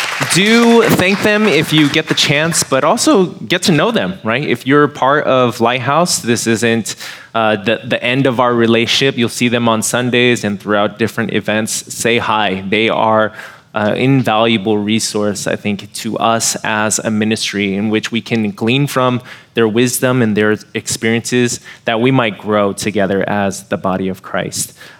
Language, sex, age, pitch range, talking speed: English, male, 20-39, 110-140 Hz, 175 wpm